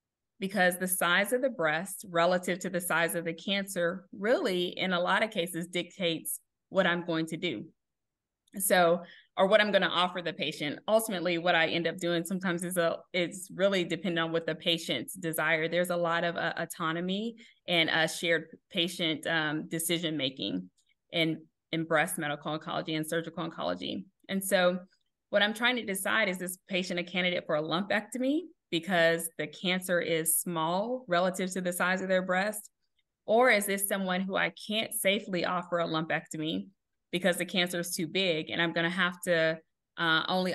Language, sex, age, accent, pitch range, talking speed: English, female, 20-39, American, 165-190 Hz, 180 wpm